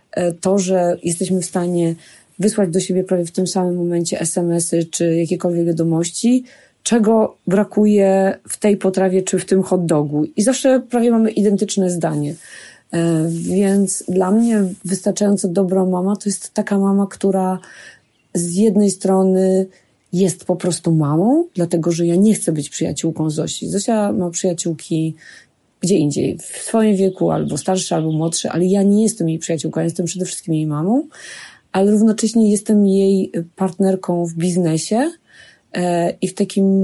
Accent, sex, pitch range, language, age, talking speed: native, female, 170-200 Hz, Polish, 30-49, 150 wpm